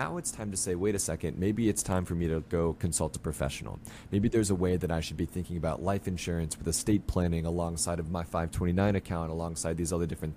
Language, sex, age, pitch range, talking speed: English, male, 30-49, 80-100 Hz, 245 wpm